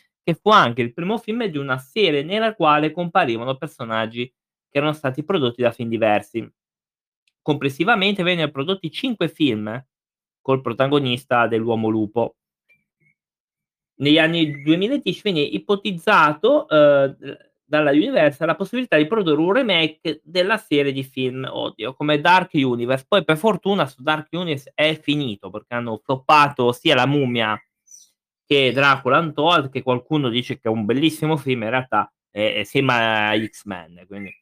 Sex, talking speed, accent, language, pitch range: male, 140 wpm, native, Italian, 125-175 Hz